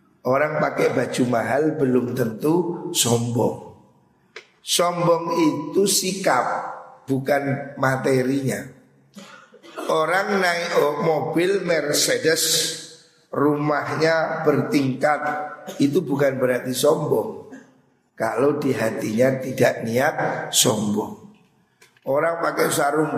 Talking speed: 80 wpm